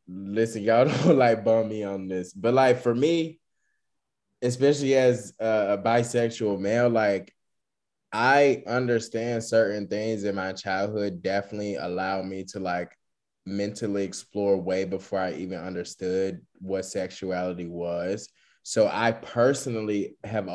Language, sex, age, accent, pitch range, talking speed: English, male, 20-39, American, 95-110 Hz, 130 wpm